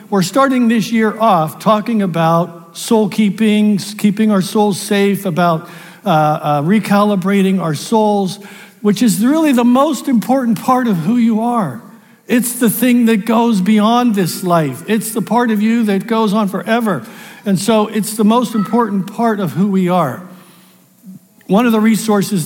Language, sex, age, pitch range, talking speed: English, male, 60-79, 165-220 Hz, 165 wpm